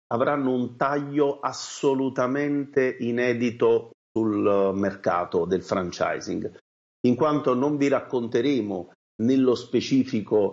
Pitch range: 115-160 Hz